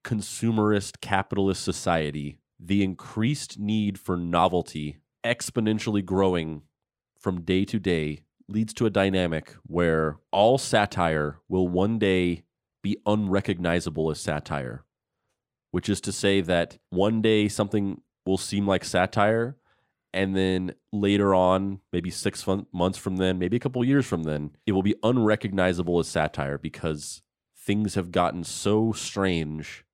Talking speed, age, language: 135 wpm, 30-49, English